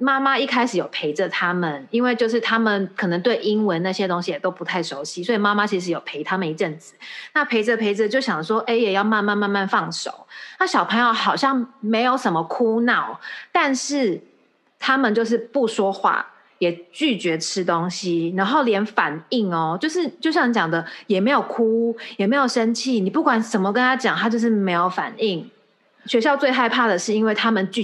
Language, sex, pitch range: Chinese, female, 180-245 Hz